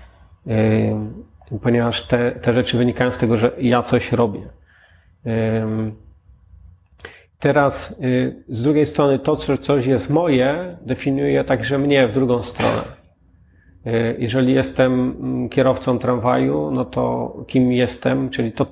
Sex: male